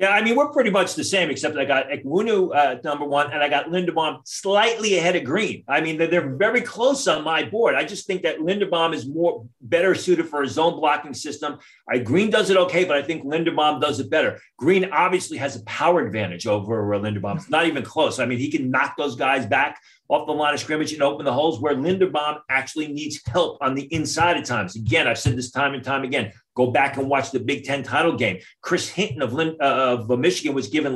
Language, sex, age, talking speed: English, male, 40-59, 240 wpm